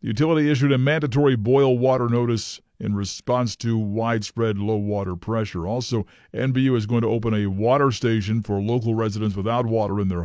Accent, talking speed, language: American, 180 wpm, English